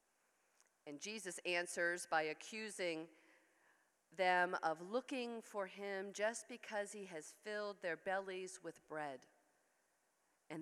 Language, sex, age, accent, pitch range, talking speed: English, female, 40-59, American, 175-210 Hz, 115 wpm